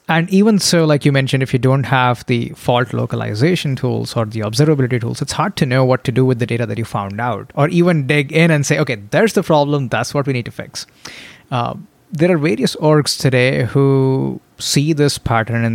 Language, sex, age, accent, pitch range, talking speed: English, male, 30-49, Indian, 120-155 Hz, 225 wpm